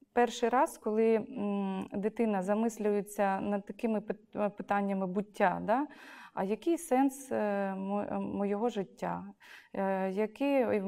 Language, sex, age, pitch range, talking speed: Ukrainian, female, 20-39, 205-255 Hz, 95 wpm